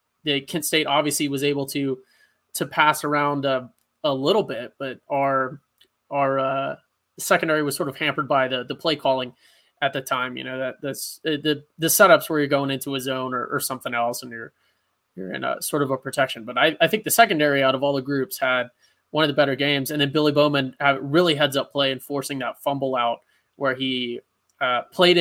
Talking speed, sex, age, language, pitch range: 220 wpm, male, 20-39, English, 135-155 Hz